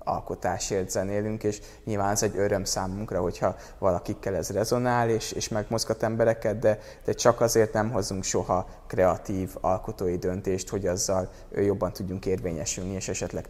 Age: 20-39